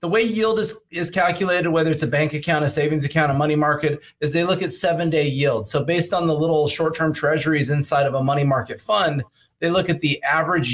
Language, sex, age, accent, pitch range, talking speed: English, male, 30-49, American, 130-165 Hz, 240 wpm